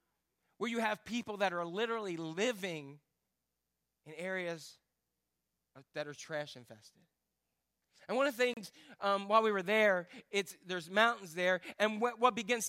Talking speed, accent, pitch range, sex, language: 145 wpm, American, 180-245 Hz, male, English